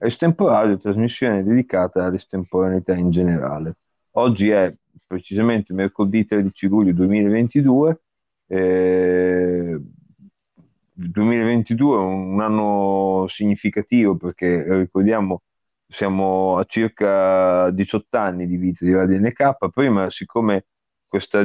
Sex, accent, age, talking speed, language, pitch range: male, native, 30-49, 95 wpm, Italian, 95-110 Hz